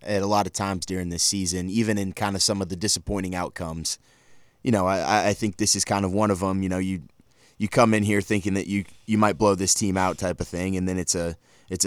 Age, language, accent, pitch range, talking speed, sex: 20-39, English, American, 90-105 Hz, 270 wpm, male